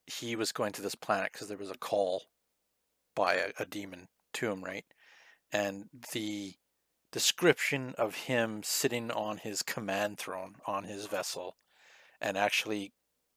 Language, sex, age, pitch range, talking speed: English, male, 40-59, 100-115 Hz, 150 wpm